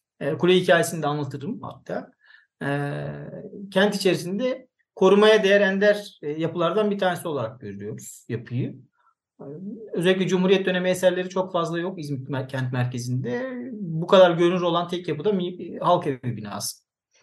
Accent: native